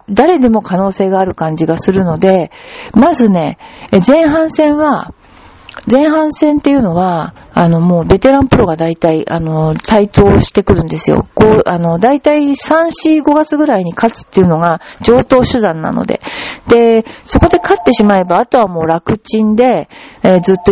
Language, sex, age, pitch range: Japanese, female, 40-59, 175-265 Hz